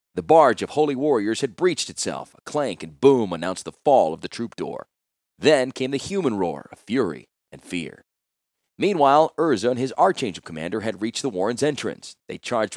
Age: 40-59